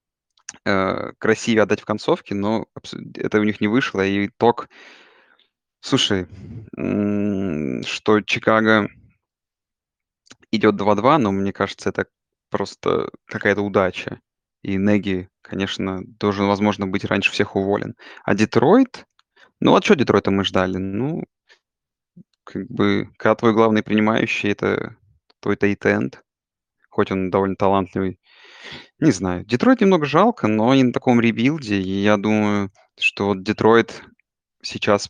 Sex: male